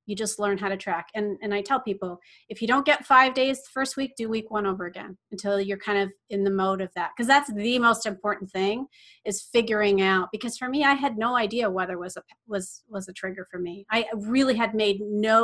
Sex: female